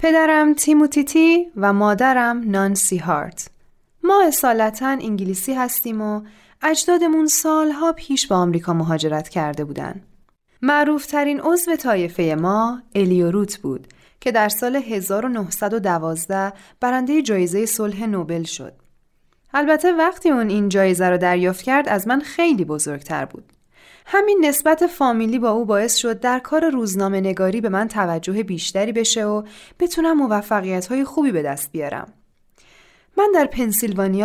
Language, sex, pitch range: Persian, female, 185-280 Hz